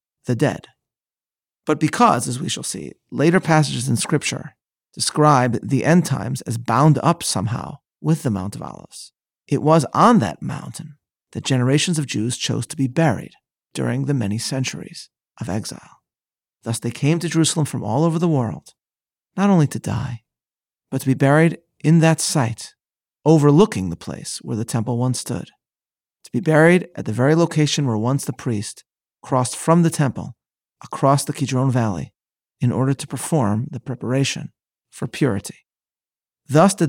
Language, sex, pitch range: English, male, 125-155 Hz